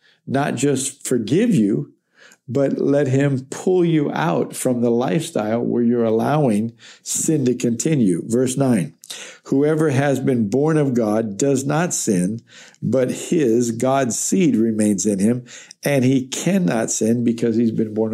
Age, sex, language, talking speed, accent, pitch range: 60-79, male, English, 150 wpm, American, 115-140 Hz